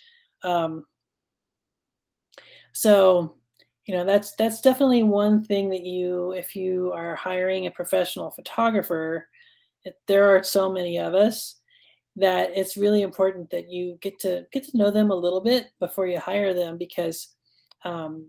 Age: 30-49